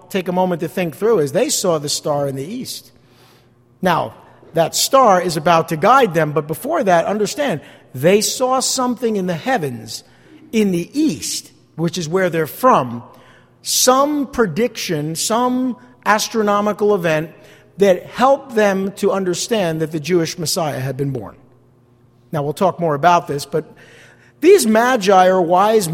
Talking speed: 155 wpm